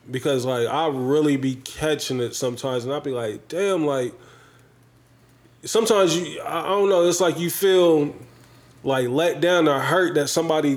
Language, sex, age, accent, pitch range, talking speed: English, male, 20-39, American, 120-145 Hz, 165 wpm